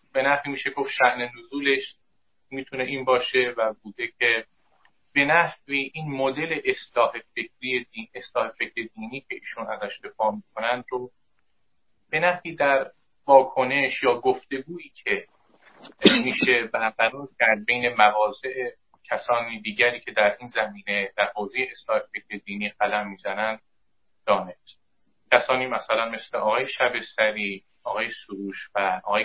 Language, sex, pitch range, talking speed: Persian, male, 110-140 Hz, 125 wpm